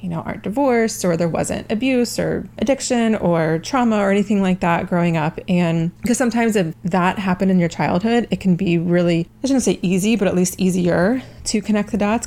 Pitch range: 175-205 Hz